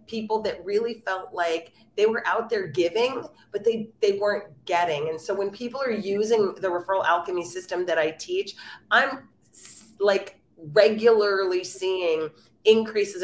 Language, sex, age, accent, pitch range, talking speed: English, female, 30-49, American, 165-210 Hz, 150 wpm